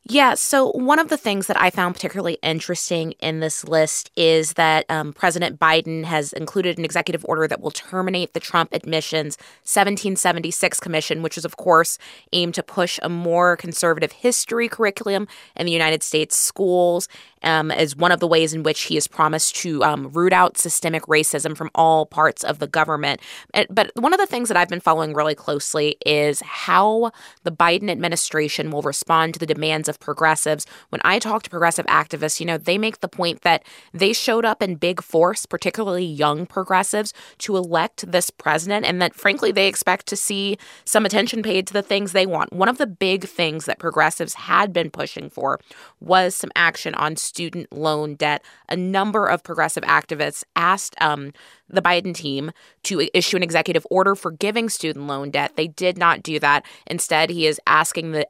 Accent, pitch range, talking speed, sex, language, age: American, 155-190 Hz, 190 wpm, female, English, 20-39